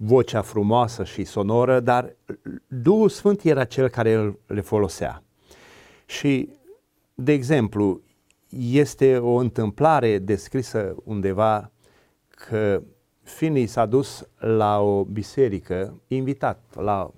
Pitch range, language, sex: 110-165 Hz, Romanian, male